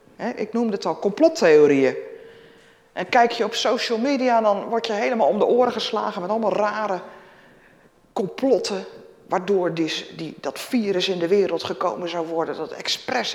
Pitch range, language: 180-260 Hz, Dutch